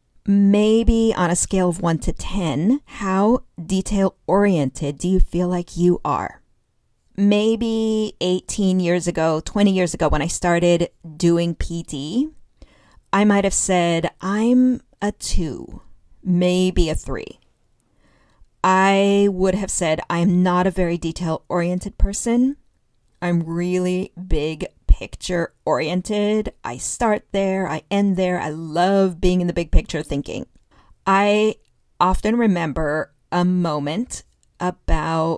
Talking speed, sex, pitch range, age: 125 wpm, female, 170-205 Hz, 40-59